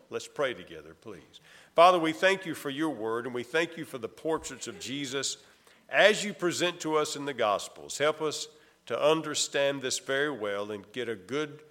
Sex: male